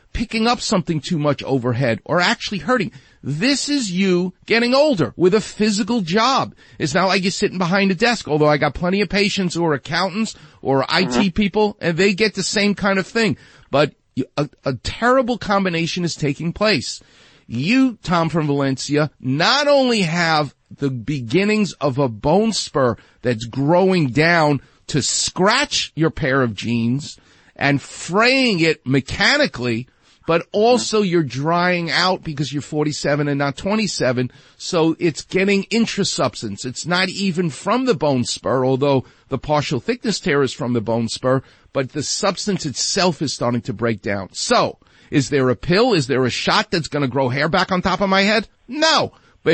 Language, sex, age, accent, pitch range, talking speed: English, male, 40-59, American, 140-200 Hz, 170 wpm